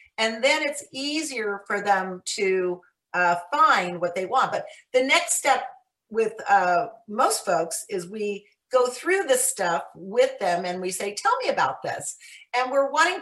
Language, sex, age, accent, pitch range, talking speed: English, female, 40-59, American, 195-260 Hz, 170 wpm